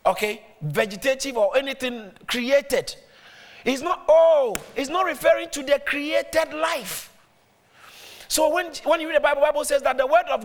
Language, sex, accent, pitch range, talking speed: English, male, Nigerian, 220-310 Hz, 165 wpm